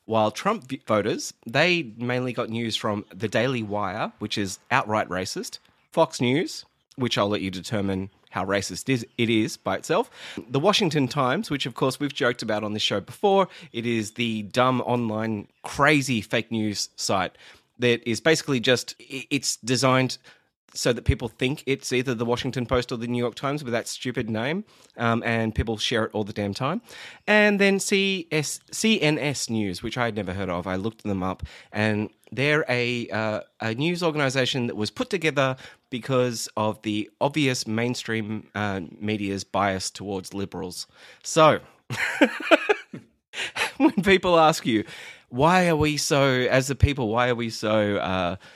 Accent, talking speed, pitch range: Australian, 165 wpm, 105-140 Hz